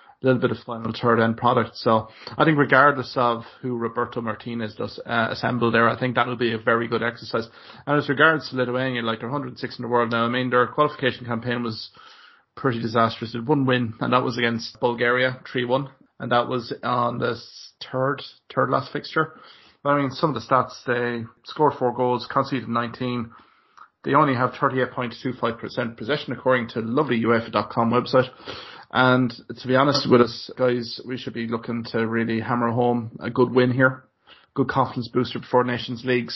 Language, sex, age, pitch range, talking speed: English, male, 30-49, 115-130 Hz, 190 wpm